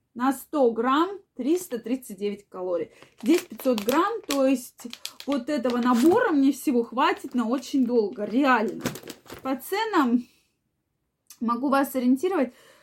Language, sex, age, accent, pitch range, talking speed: Russian, female, 20-39, native, 230-285 Hz, 115 wpm